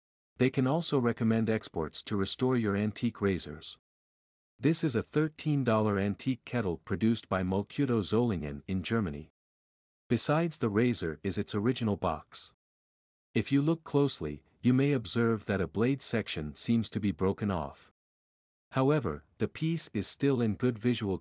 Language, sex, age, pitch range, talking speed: English, male, 50-69, 90-125 Hz, 150 wpm